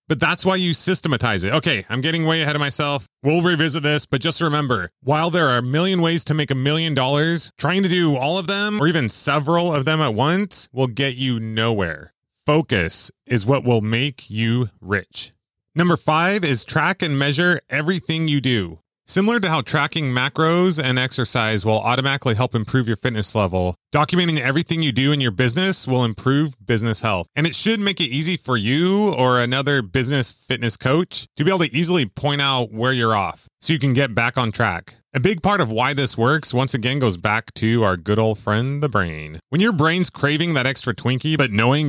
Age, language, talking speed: 30-49, English, 210 wpm